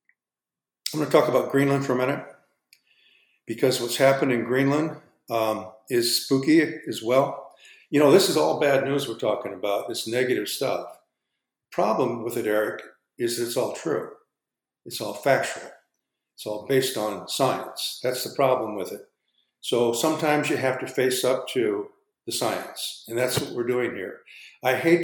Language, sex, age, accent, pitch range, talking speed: English, male, 50-69, American, 120-140 Hz, 170 wpm